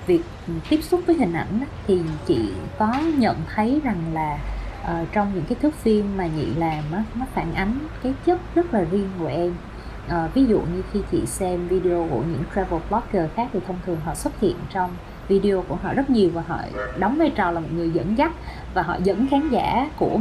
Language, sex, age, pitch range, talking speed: Vietnamese, female, 20-39, 175-240 Hz, 210 wpm